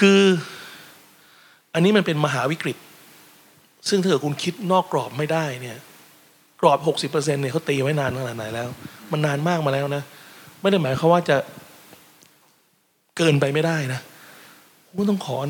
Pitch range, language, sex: 140-175 Hz, Thai, male